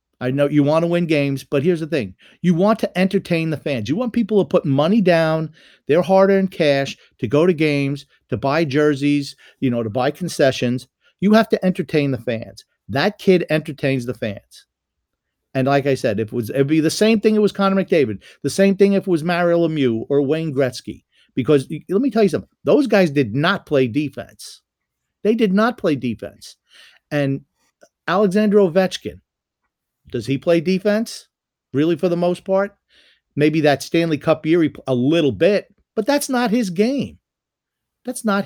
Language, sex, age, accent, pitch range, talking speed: English, male, 50-69, American, 135-190 Hz, 190 wpm